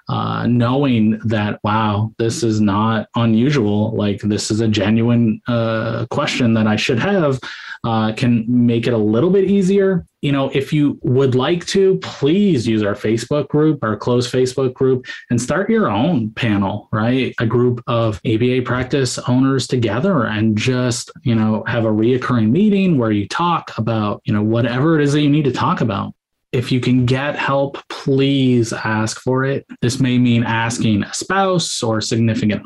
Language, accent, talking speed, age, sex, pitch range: English, American, 180 wpm, 20-39, male, 115-145 Hz